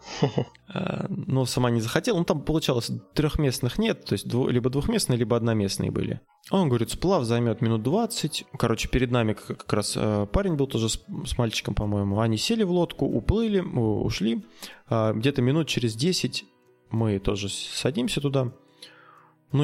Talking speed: 150 wpm